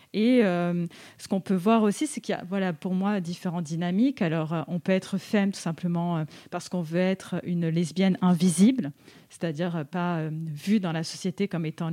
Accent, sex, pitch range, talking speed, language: French, female, 170-205 Hz, 195 wpm, French